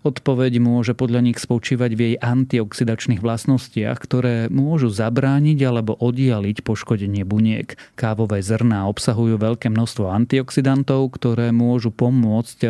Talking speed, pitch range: 120 wpm, 110-125 Hz